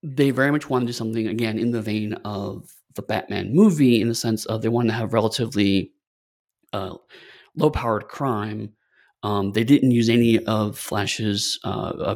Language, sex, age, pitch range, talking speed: English, male, 30-49, 105-125 Hz, 175 wpm